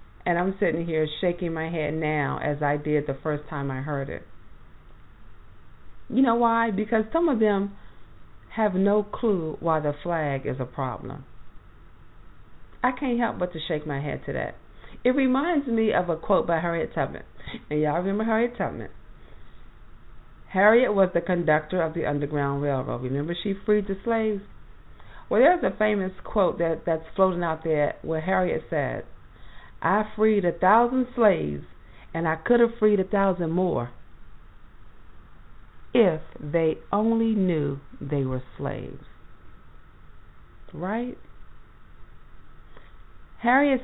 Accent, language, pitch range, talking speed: American, English, 125-200 Hz, 145 wpm